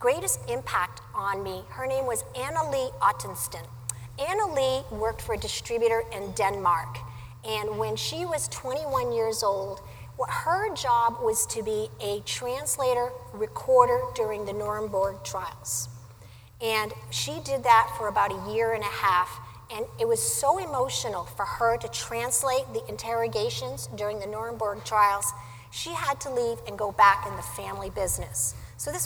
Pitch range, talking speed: 185-260 Hz, 160 wpm